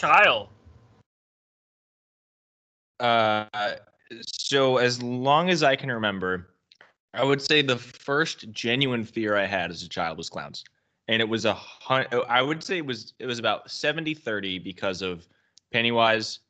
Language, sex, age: English, male, 20-39